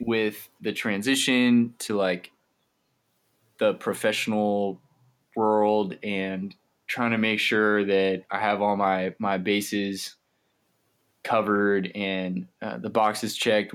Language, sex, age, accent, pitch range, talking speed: English, male, 20-39, American, 100-120 Hz, 115 wpm